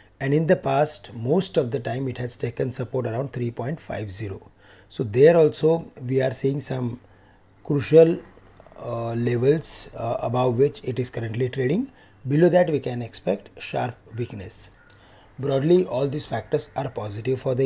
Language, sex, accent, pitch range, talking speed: English, male, Indian, 115-145 Hz, 155 wpm